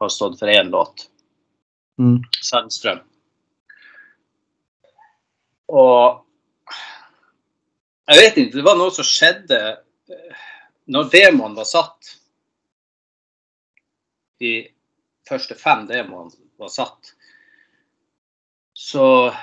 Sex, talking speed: male, 85 wpm